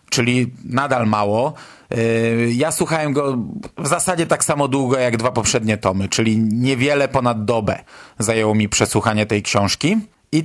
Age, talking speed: 30-49, 145 wpm